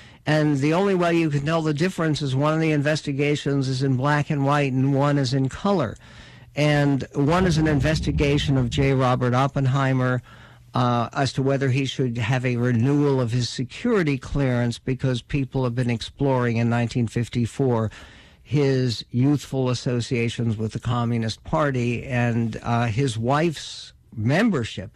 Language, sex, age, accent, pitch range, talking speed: English, male, 60-79, American, 120-150 Hz, 155 wpm